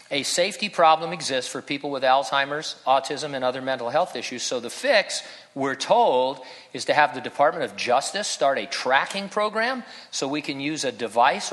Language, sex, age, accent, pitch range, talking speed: English, male, 50-69, American, 120-150 Hz, 190 wpm